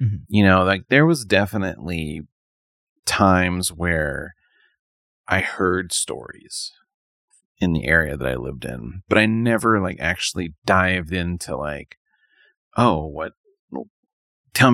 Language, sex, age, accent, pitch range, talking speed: English, male, 30-49, American, 85-115 Hz, 120 wpm